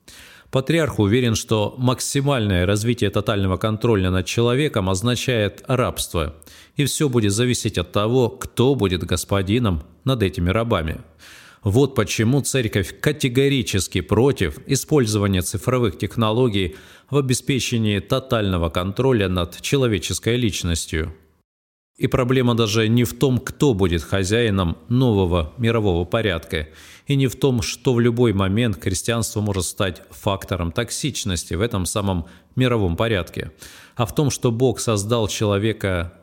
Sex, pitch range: male, 90-120 Hz